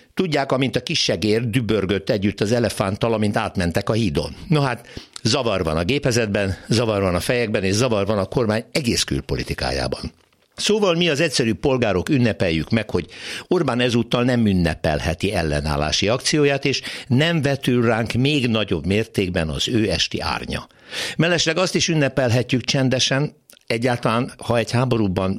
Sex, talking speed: male, 150 wpm